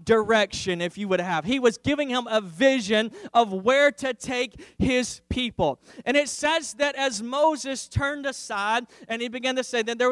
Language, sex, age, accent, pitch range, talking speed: English, male, 20-39, American, 220-260 Hz, 190 wpm